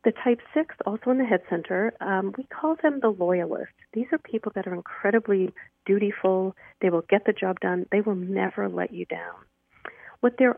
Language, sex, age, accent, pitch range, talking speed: English, female, 40-59, American, 180-225 Hz, 200 wpm